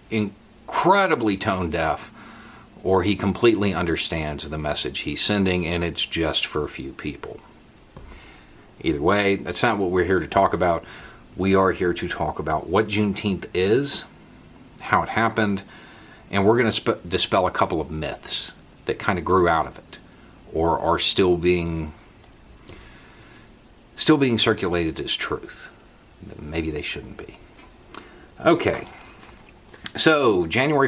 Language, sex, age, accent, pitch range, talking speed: English, male, 50-69, American, 85-115 Hz, 135 wpm